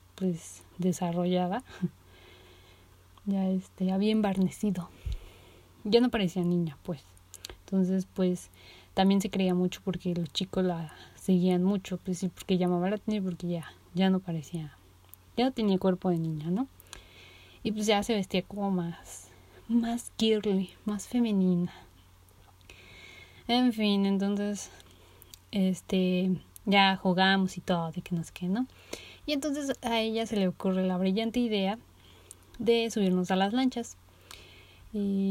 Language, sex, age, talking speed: Spanish, female, 30-49, 140 wpm